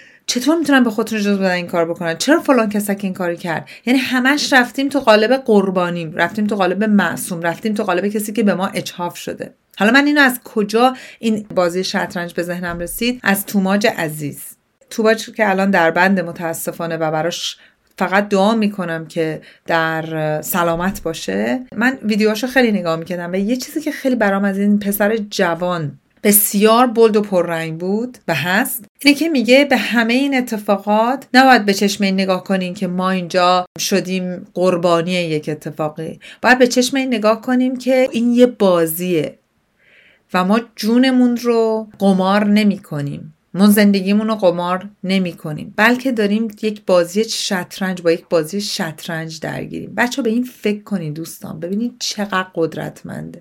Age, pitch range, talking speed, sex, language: 40-59, 175-225 Hz, 165 wpm, female, Persian